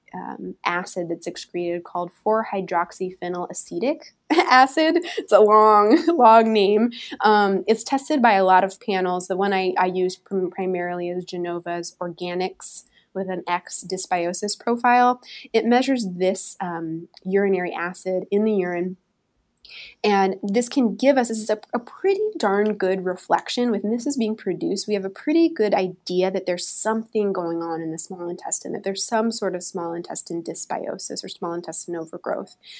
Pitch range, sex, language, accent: 180-230 Hz, female, English, American